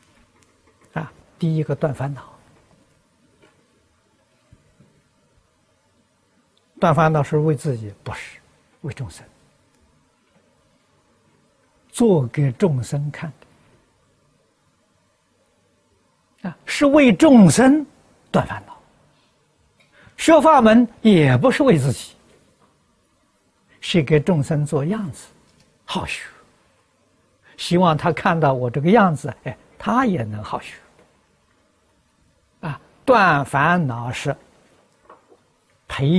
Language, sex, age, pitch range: Chinese, male, 60-79, 135-180 Hz